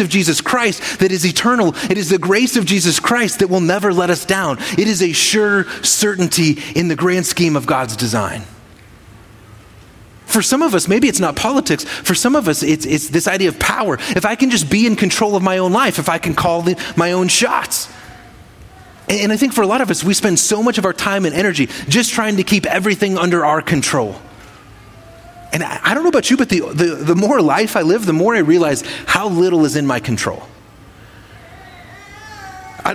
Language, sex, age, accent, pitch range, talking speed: English, male, 30-49, American, 150-205 Hz, 215 wpm